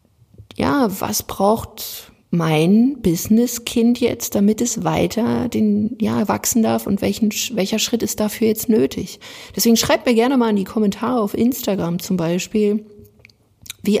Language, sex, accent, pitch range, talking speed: German, female, German, 175-225 Hz, 145 wpm